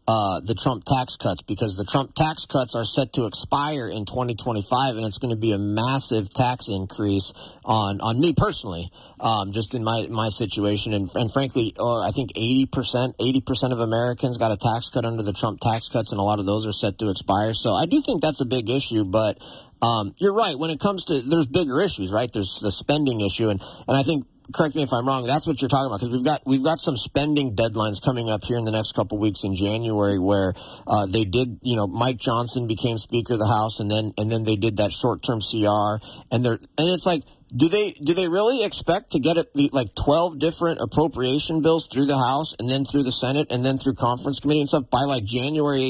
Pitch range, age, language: 110-150 Hz, 30-49, English